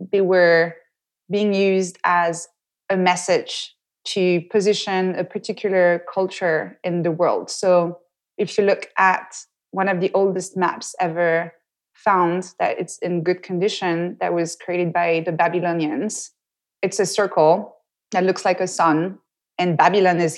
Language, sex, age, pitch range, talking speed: English, female, 20-39, 170-195 Hz, 145 wpm